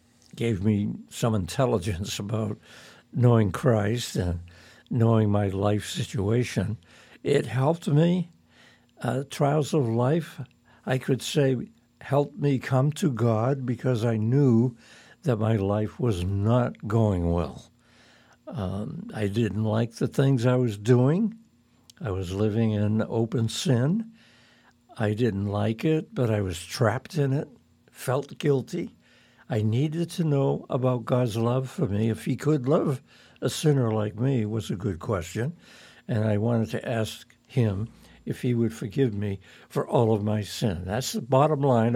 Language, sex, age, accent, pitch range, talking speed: English, male, 60-79, American, 110-135 Hz, 150 wpm